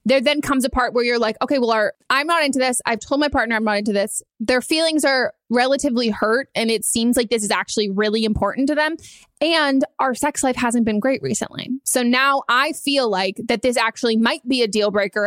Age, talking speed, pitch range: 20-39, 230 wpm, 220-270 Hz